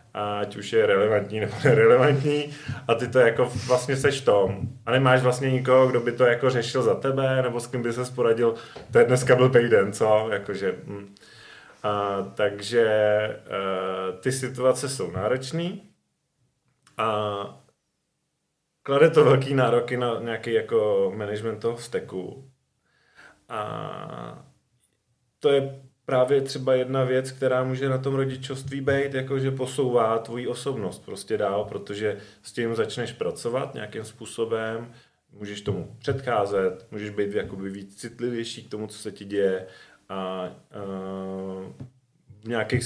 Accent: native